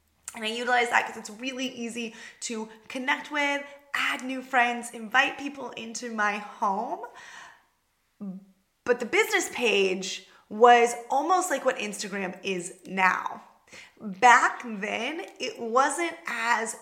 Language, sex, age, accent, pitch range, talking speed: English, female, 20-39, American, 220-280 Hz, 125 wpm